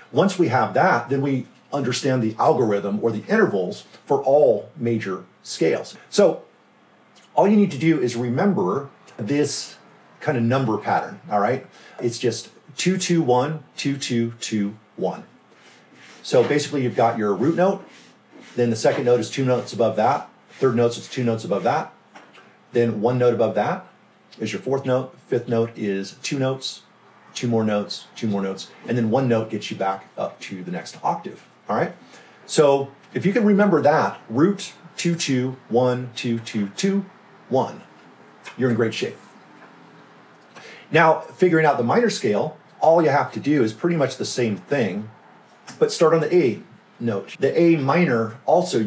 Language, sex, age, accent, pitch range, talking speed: English, male, 40-59, American, 110-145 Hz, 175 wpm